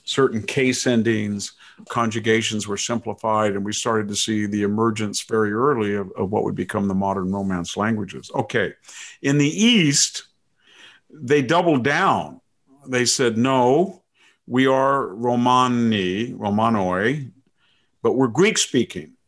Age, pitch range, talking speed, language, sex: 50-69, 110-130 Hz, 130 wpm, English, male